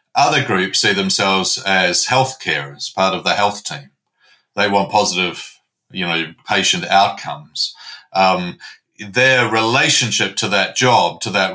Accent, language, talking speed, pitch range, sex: Australian, English, 140 wpm, 95-120 Hz, male